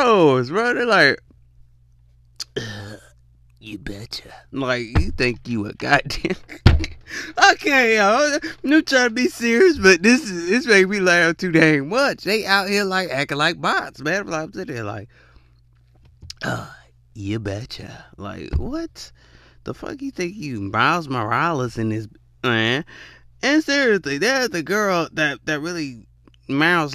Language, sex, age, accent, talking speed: English, male, 30-49, American, 155 wpm